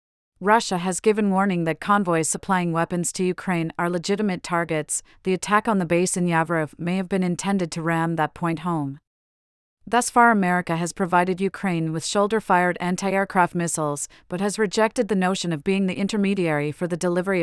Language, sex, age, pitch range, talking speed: English, female, 40-59, 165-200 Hz, 175 wpm